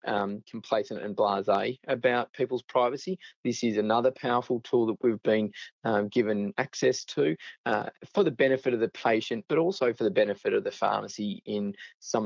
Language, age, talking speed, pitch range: English, 20-39, 175 wpm, 105-130 Hz